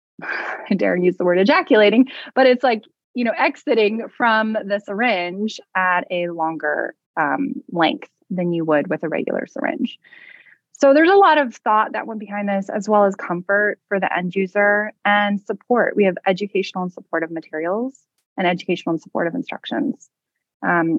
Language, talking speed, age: English, 170 wpm, 20-39